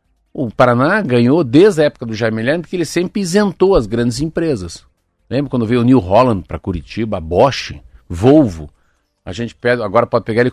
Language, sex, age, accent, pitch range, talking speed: Portuguese, male, 50-69, Brazilian, 100-165 Hz, 195 wpm